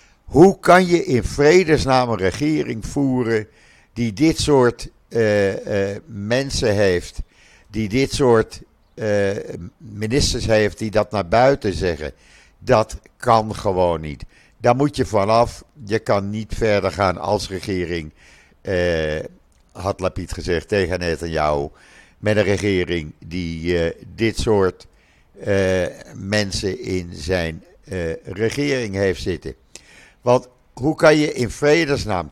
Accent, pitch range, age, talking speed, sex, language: Dutch, 90-125 Hz, 60-79, 125 wpm, male, Dutch